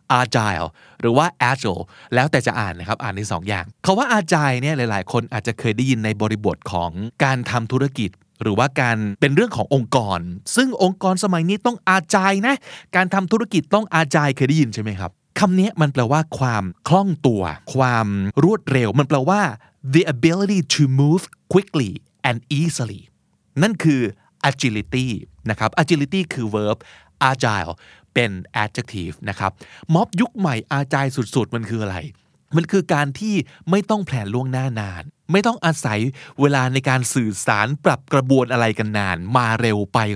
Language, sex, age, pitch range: Thai, male, 20-39, 110-150 Hz